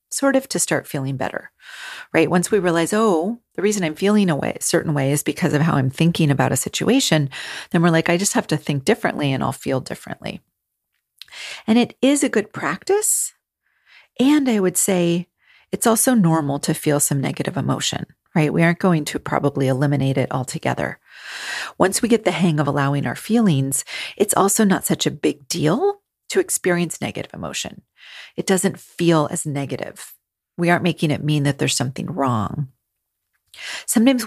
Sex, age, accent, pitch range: female, 40-59, American, 145-215 Hz